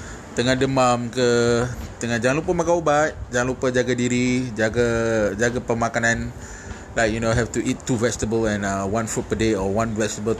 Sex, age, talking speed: male, 20-39, 185 wpm